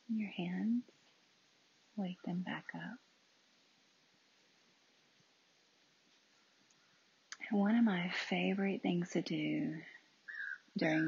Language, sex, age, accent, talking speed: English, female, 40-59, American, 80 wpm